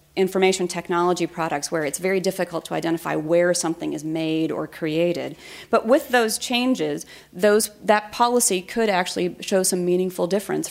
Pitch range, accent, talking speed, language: 165-200 Hz, American, 155 wpm, English